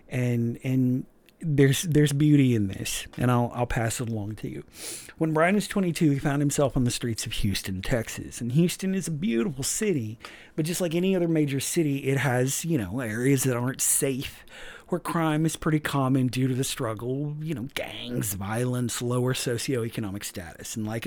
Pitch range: 120-150 Hz